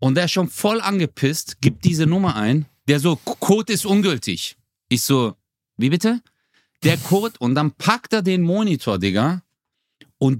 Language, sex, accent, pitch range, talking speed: German, male, German, 130-195 Hz, 165 wpm